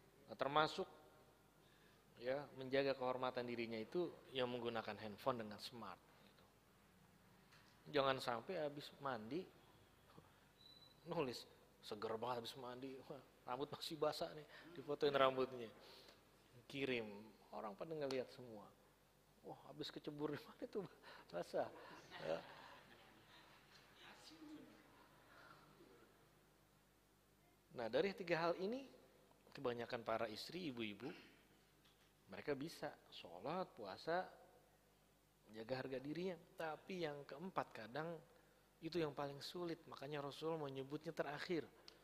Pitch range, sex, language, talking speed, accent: 120-160 Hz, male, Indonesian, 95 wpm, native